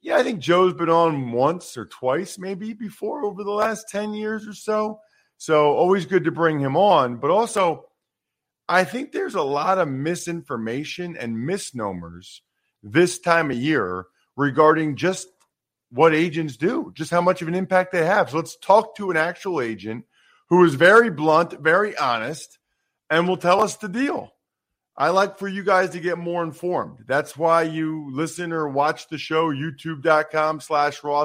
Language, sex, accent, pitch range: English, male, American, 130-180 Hz